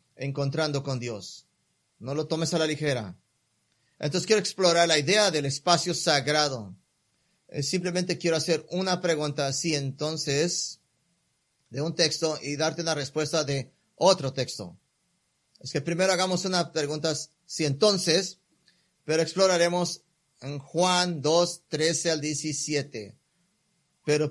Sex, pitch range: male, 145-170 Hz